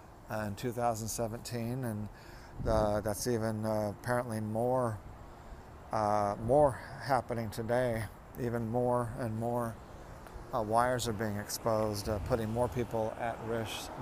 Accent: American